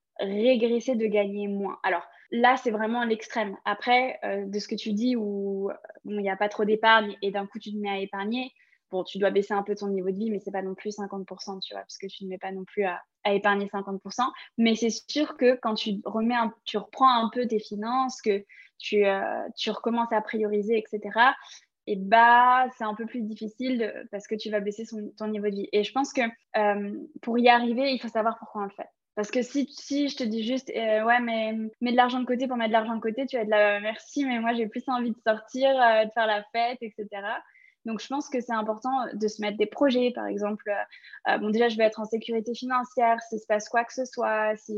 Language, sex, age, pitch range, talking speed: French, female, 20-39, 210-245 Hz, 250 wpm